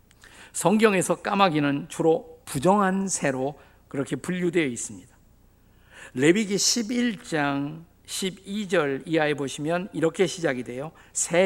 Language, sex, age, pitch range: Korean, male, 50-69, 125-180 Hz